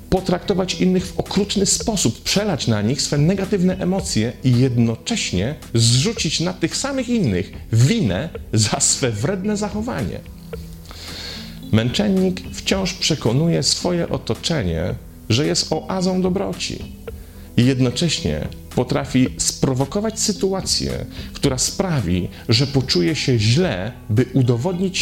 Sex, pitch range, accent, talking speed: male, 125-190 Hz, native, 110 wpm